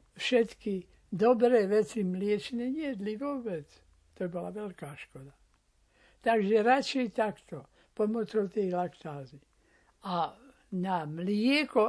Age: 60-79